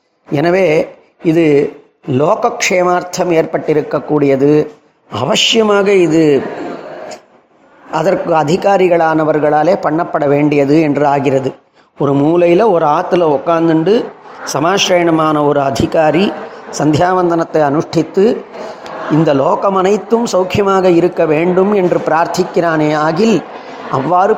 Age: 30-49